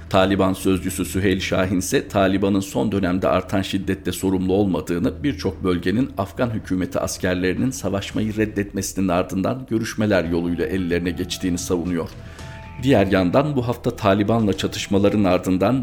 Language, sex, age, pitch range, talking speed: Turkish, male, 50-69, 90-100 Hz, 120 wpm